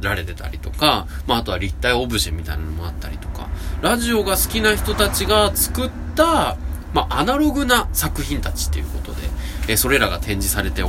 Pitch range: 80-115 Hz